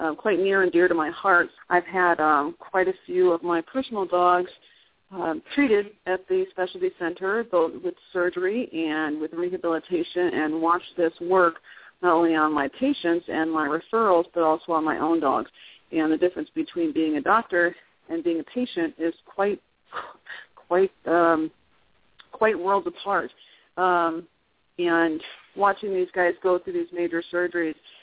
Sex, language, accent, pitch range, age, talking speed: female, English, American, 165-195 Hz, 40-59, 165 wpm